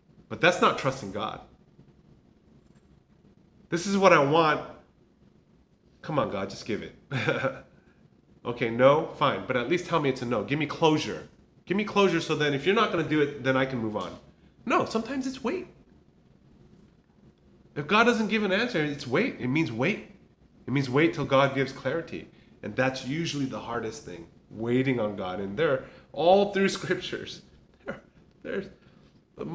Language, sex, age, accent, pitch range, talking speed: English, male, 30-49, American, 130-200 Hz, 175 wpm